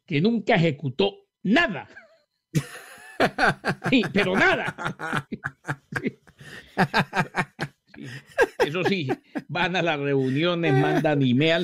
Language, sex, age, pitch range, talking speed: English, male, 50-69, 145-210 Hz, 90 wpm